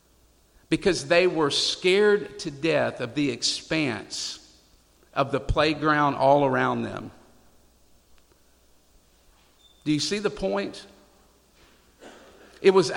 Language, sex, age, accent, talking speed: English, male, 50-69, American, 100 wpm